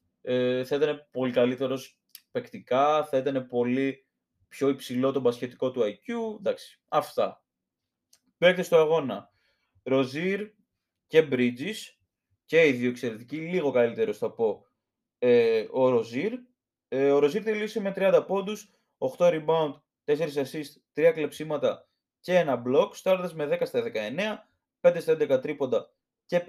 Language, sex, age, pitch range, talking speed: Greek, male, 20-39, 135-190 Hz, 130 wpm